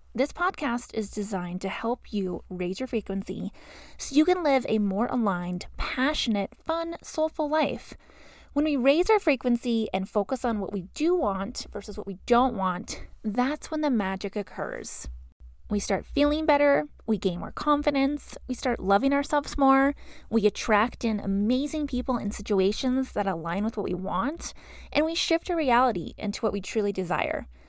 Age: 20-39